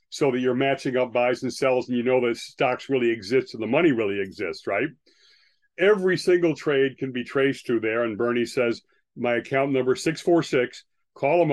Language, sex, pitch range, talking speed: English, male, 125-150 Hz, 205 wpm